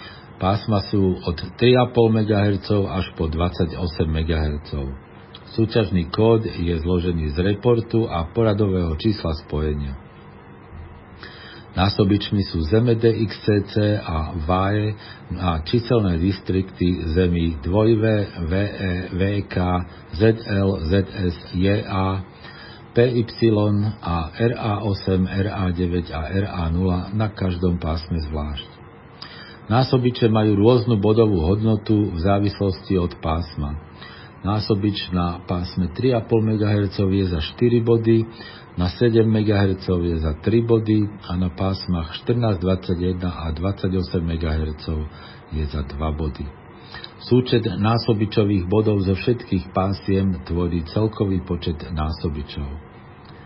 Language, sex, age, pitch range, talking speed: Slovak, male, 50-69, 85-110 Hz, 100 wpm